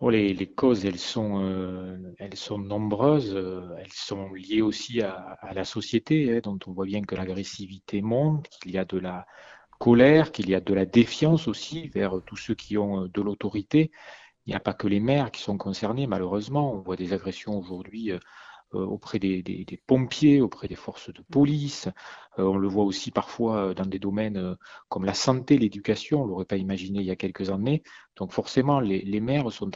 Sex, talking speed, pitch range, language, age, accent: male, 200 wpm, 100-130 Hz, French, 40-59, French